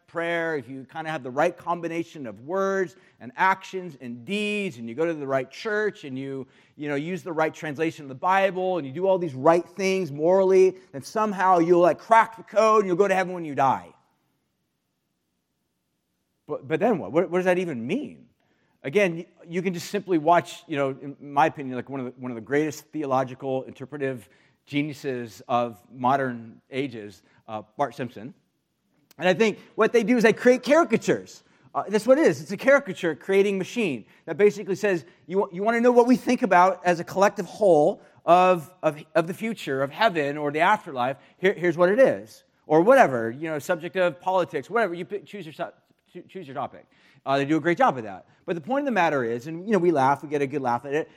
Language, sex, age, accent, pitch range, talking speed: English, male, 40-59, American, 145-190 Hz, 220 wpm